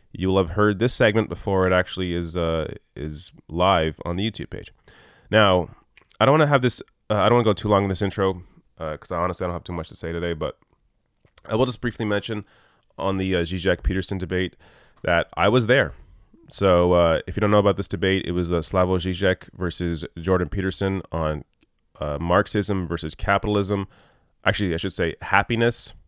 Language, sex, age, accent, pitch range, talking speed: English, male, 20-39, American, 85-105 Hz, 205 wpm